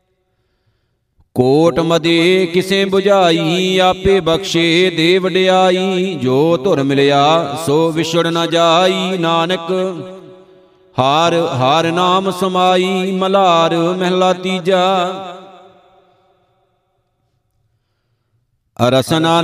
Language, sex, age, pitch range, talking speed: Punjabi, male, 50-69, 165-185 Hz, 75 wpm